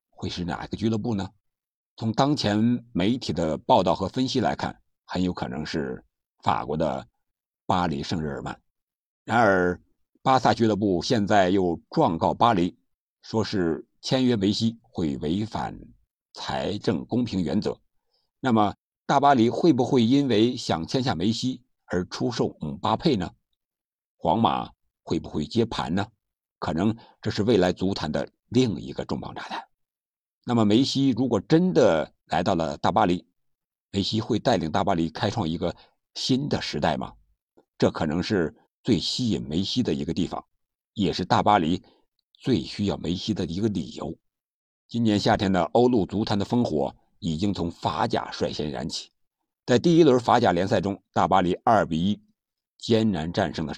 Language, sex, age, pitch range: Chinese, male, 60-79, 95-125 Hz